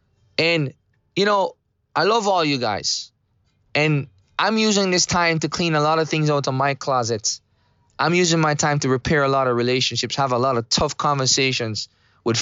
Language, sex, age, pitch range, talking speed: English, male, 20-39, 115-160 Hz, 195 wpm